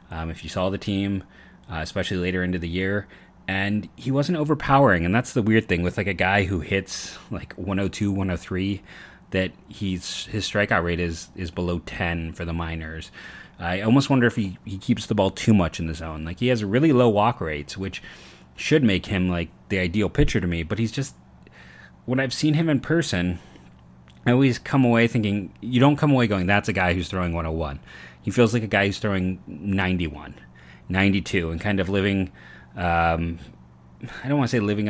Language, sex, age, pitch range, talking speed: English, male, 30-49, 85-105 Hz, 205 wpm